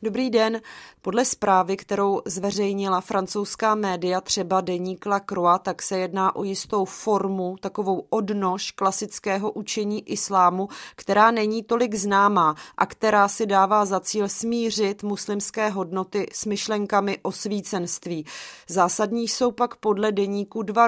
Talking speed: 130 wpm